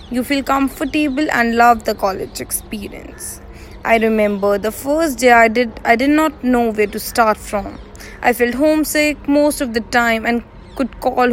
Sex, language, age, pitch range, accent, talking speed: female, English, 20-39, 220-260 Hz, Indian, 175 wpm